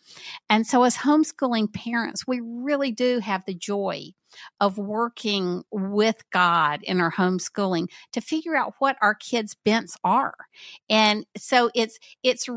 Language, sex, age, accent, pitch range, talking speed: English, female, 50-69, American, 185-240 Hz, 145 wpm